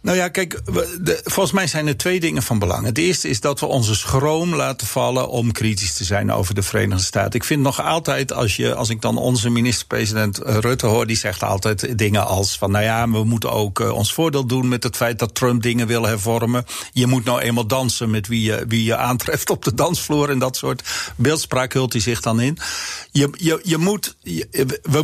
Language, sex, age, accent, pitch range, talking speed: Dutch, male, 50-69, Dutch, 110-145 Hz, 205 wpm